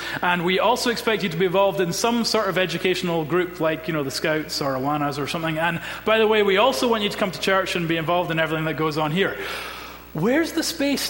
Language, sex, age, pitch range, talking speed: English, male, 30-49, 130-180 Hz, 255 wpm